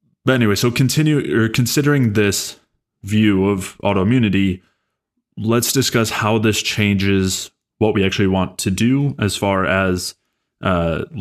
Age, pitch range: 20-39, 90-105 Hz